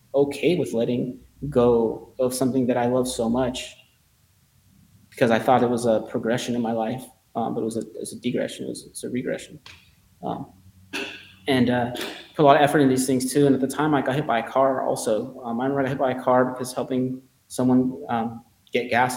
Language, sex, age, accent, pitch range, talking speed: English, male, 20-39, American, 115-135 Hz, 230 wpm